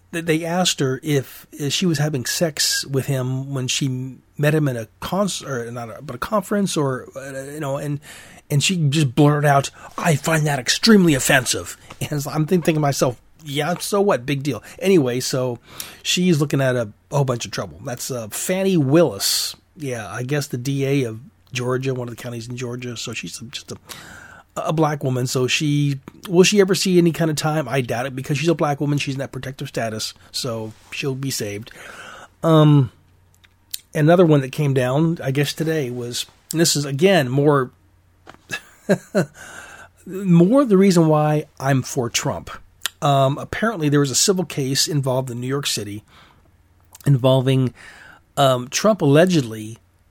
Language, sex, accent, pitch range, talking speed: English, male, American, 125-160 Hz, 175 wpm